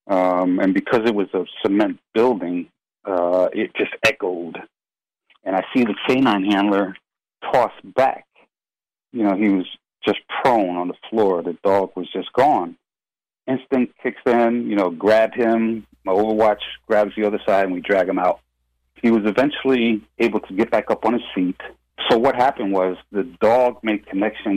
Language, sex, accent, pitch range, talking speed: English, male, American, 90-120 Hz, 175 wpm